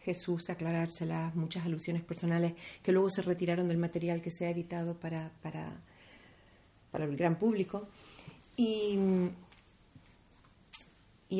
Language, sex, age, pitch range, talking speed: Spanish, female, 40-59, 170-205 Hz, 115 wpm